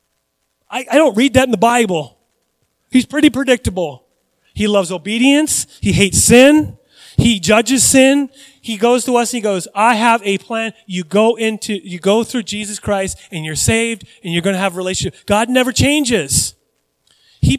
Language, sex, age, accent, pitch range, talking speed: English, male, 30-49, American, 155-240 Hz, 175 wpm